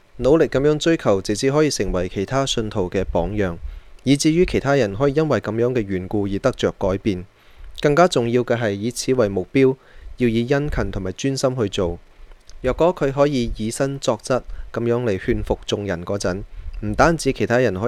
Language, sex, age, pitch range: Chinese, male, 20-39, 100-130 Hz